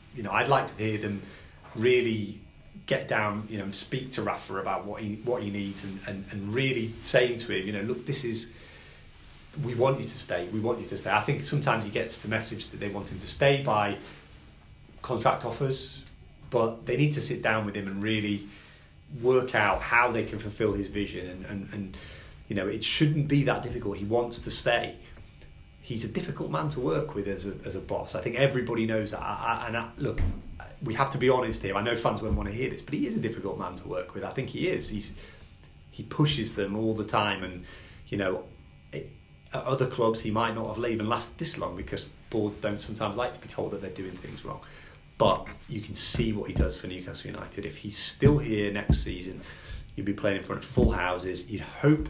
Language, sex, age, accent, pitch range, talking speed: English, male, 30-49, British, 95-120 Hz, 235 wpm